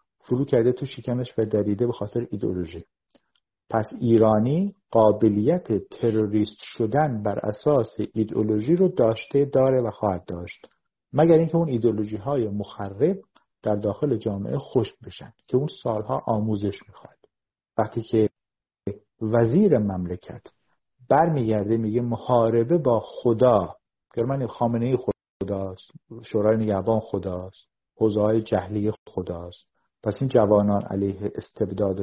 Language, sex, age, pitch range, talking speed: Persian, male, 50-69, 105-125 Hz, 115 wpm